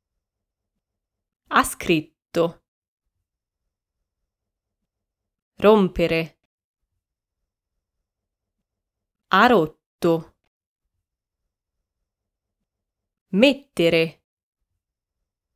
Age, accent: 20-39, native